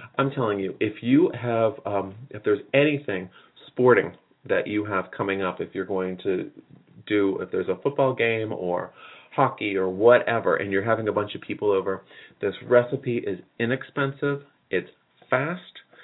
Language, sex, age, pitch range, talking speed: English, male, 30-49, 95-125 Hz, 165 wpm